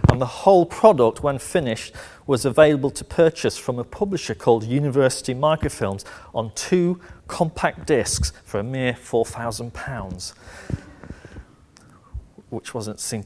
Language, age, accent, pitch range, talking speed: English, 40-59, British, 115-160 Hz, 120 wpm